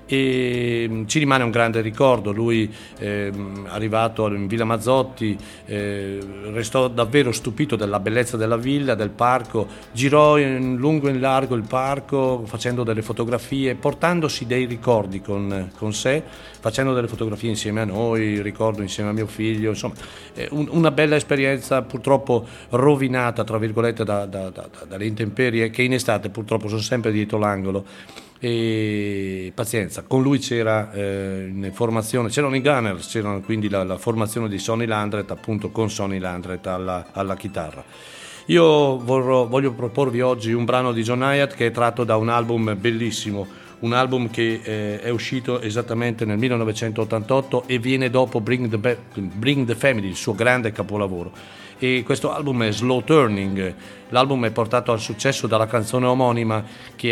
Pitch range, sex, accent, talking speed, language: 105-125 Hz, male, native, 160 wpm, Italian